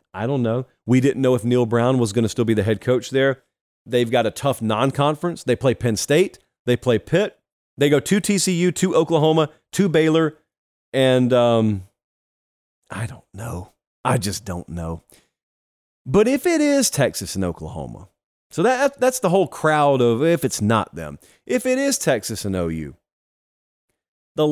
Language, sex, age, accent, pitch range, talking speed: English, male, 30-49, American, 115-180 Hz, 175 wpm